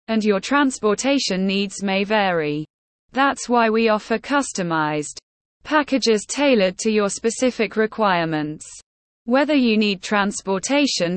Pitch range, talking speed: 180-250 Hz, 115 wpm